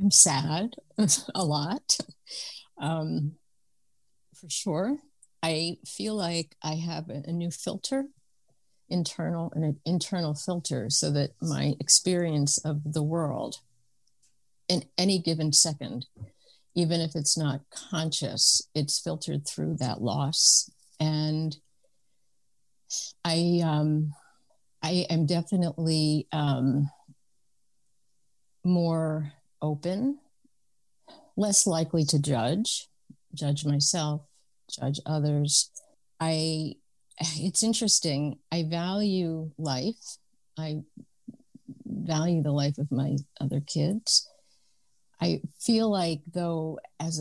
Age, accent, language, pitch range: 50-69, American, English, 145-180 Hz